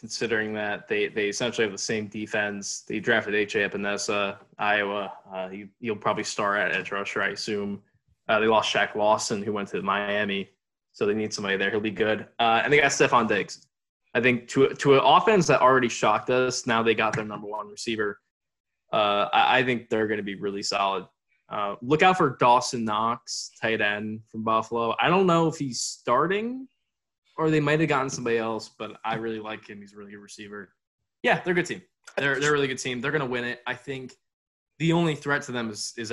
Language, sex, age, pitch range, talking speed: English, male, 20-39, 105-125 Hz, 220 wpm